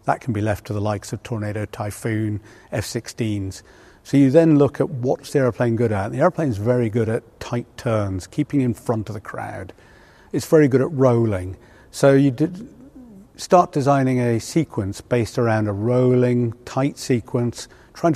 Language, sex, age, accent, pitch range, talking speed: English, male, 50-69, British, 110-135 Hz, 180 wpm